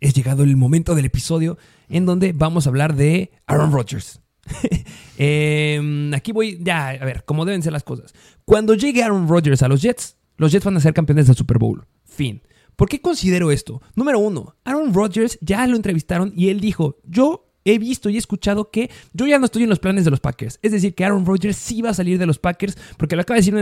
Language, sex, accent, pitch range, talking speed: Spanish, male, Mexican, 150-205 Hz, 235 wpm